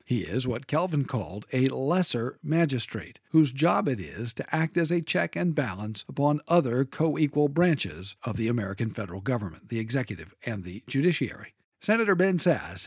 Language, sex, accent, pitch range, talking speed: English, male, American, 120-160 Hz, 170 wpm